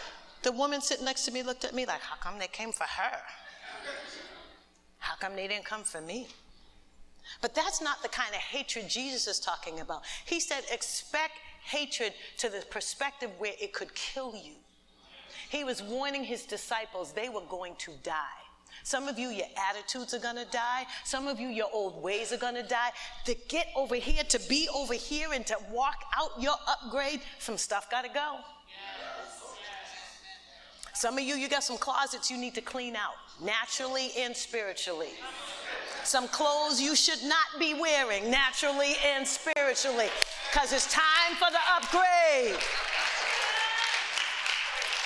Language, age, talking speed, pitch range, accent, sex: English, 40-59, 160 wpm, 235-295 Hz, American, female